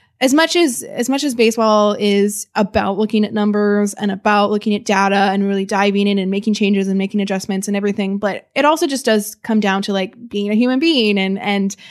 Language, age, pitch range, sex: English, 20-39, 195-220 Hz, female